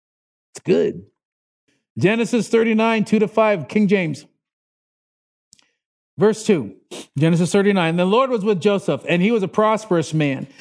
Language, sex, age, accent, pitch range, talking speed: English, male, 40-59, American, 180-245 Hz, 130 wpm